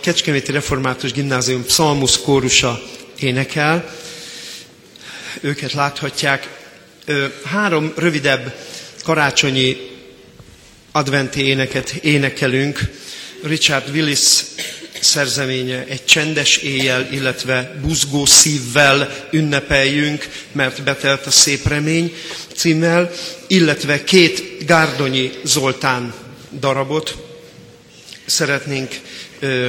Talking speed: 75 wpm